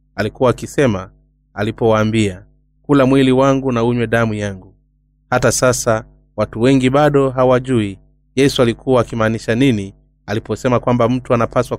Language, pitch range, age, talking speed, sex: Swahili, 110-135 Hz, 30-49, 120 wpm, male